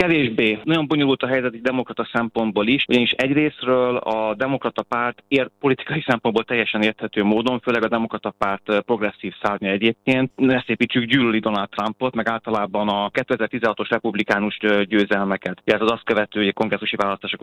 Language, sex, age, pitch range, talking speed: Hungarian, male, 30-49, 105-125 Hz, 150 wpm